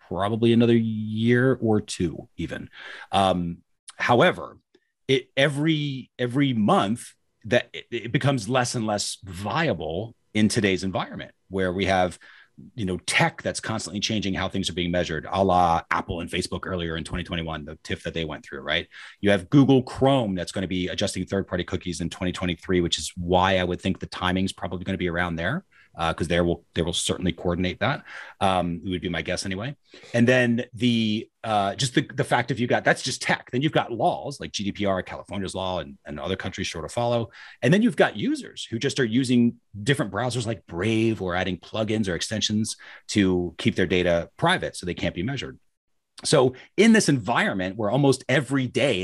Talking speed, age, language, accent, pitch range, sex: 195 wpm, 30-49, English, American, 90-120 Hz, male